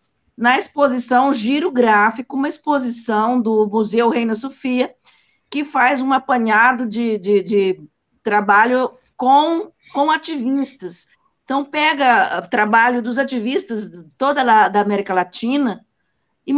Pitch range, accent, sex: 215-275 Hz, Brazilian, female